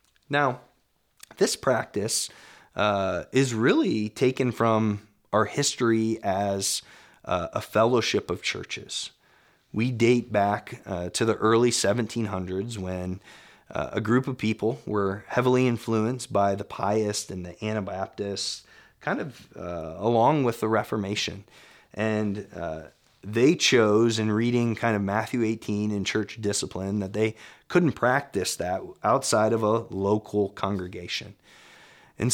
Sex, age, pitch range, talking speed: male, 30-49, 105-125 Hz, 130 wpm